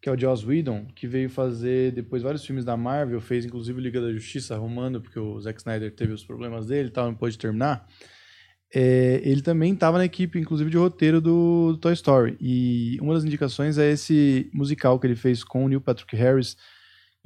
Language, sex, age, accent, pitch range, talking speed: Portuguese, male, 20-39, Brazilian, 125-155 Hz, 210 wpm